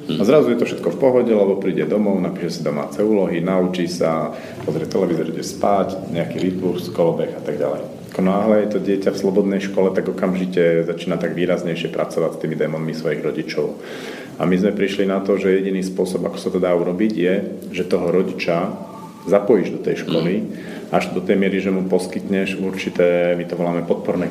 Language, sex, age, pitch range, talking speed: Slovak, male, 40-59, 85-100 Hz, 195 wpm